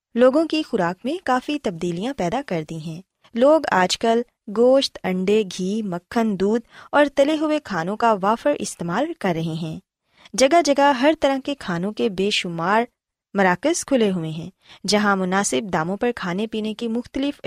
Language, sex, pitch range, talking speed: Urdu, female, 185-270 Hz, 170 wpm